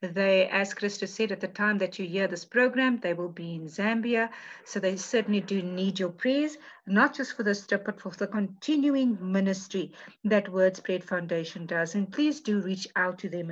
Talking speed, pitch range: 205 wpm, 185-235 Hz